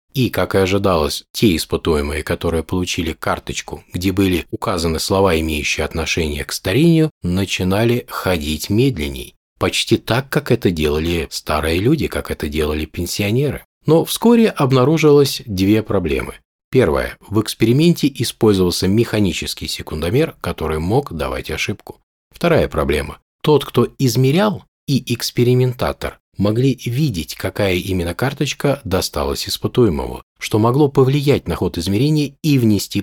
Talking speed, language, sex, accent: 125 wpm, Russian, male, native